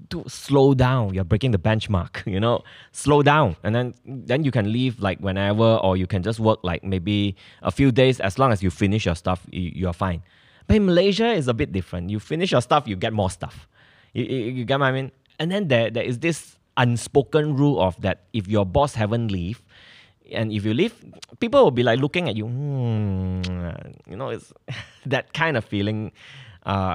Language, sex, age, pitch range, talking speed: English, male, 20-39, 90-125 Hz, 210 wpm